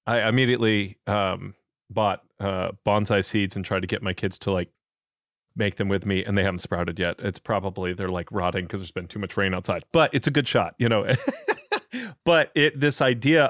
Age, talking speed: 30-49, 205 wpm